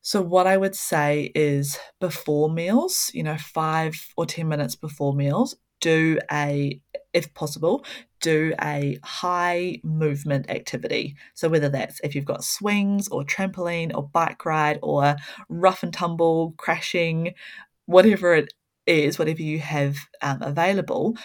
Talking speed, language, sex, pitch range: 140 wpm, English, female, 145-180 Hz